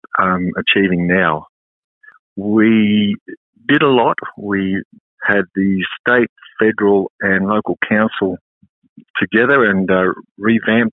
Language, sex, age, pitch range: English, male, 50-69, 100-125 Hz